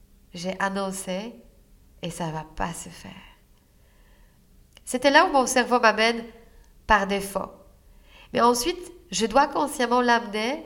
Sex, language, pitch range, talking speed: female, French, 185-230 Hz, 130 wpm